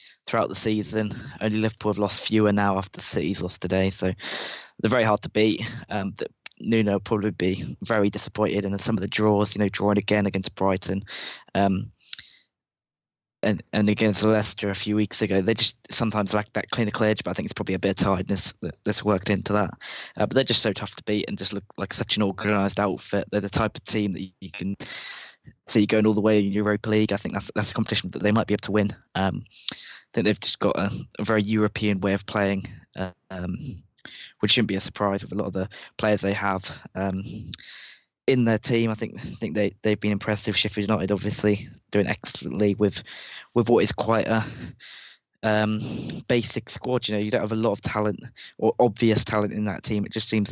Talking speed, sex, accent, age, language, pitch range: 215 wpm, male, British, 20-39, English, 100-110 Hz